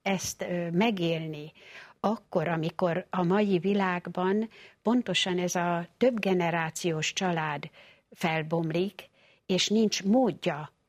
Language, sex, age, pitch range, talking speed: Hungarian, female, 60-79, 165-195 Hz, 90 wpm